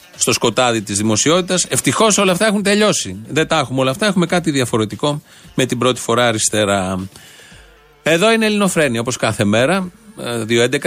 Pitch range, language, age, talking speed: 115-165 Hz, Greek, 40-59, 160 wpm